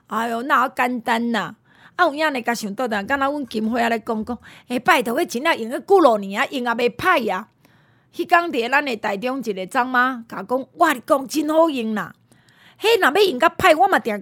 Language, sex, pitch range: Chinese, female, 210-275 Hz